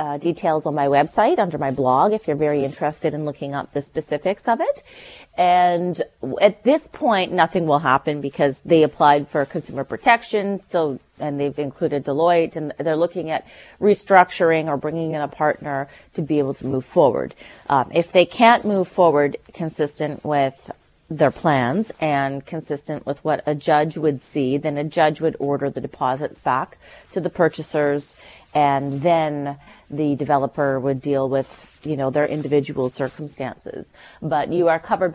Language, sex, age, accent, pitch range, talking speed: English, female, 30-49, American, 145-180 Hz, 165 wpm